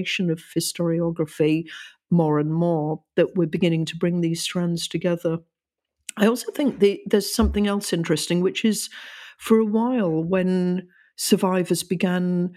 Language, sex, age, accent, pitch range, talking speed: English, female, 50-69, British, 165-195 Hz, 140 wpm